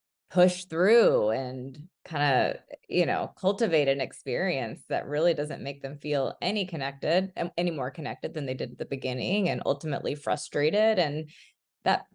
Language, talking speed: English, 160 wpm